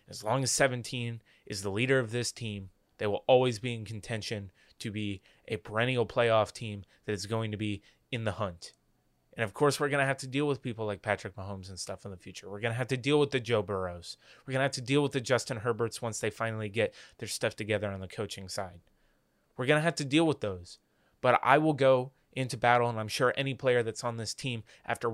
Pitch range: 105-130 Hz